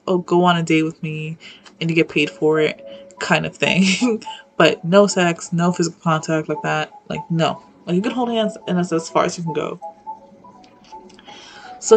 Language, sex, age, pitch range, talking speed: English, female, 20-39, 170-220 Hz, 200 wpm